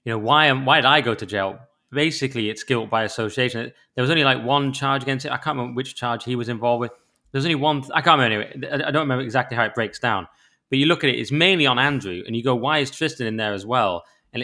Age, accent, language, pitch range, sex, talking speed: 20-39, British, English, 115-140 Hz, male, 285 wpm